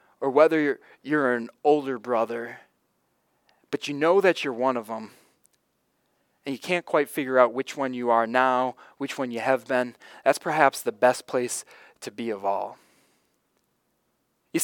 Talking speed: 170 wpm